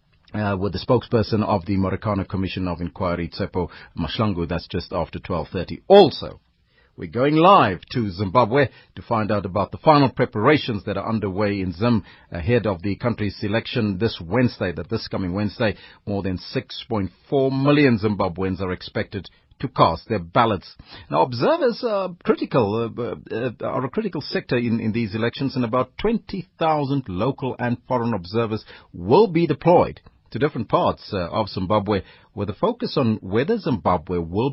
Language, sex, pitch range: English, male, 95-125 Hz